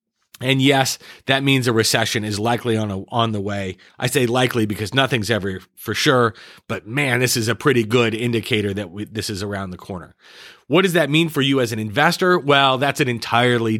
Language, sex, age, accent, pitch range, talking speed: English, male, 30-49, American, 105-135 Hz, 215 wpm